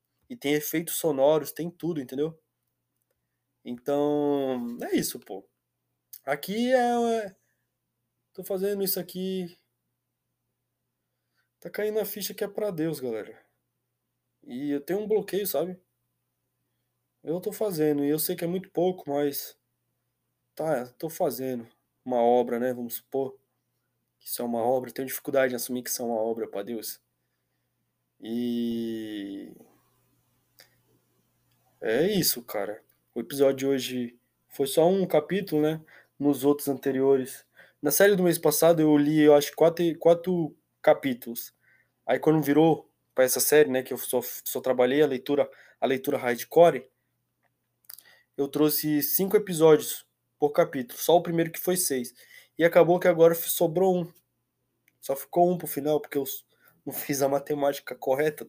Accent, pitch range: Brazilian, 125-170 Hz